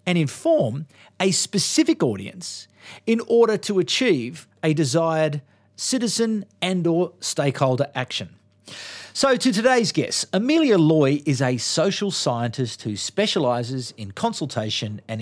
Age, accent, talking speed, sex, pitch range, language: 40-59, Australian, 120 wpm, male, 115-185 Hz, English